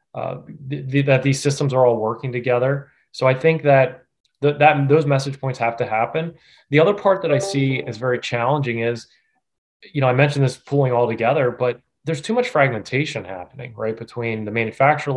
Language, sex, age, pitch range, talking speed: English, male, 20-39, 115-135 Hz, 200 wpm